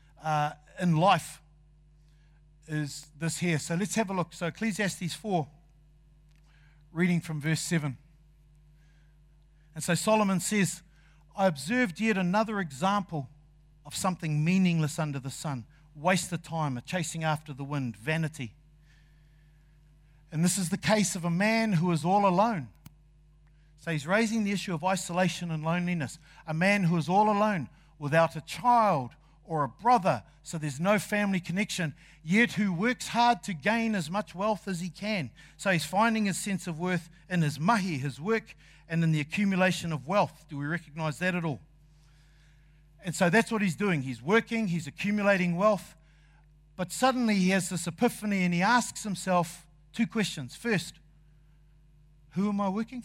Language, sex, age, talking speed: English, male, 50-69, 165 wpm